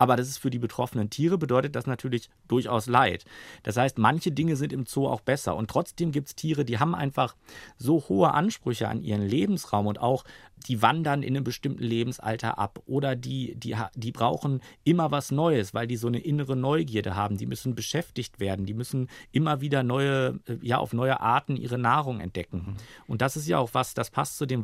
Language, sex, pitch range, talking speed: German, male, 115-145 Hz, 205 wpm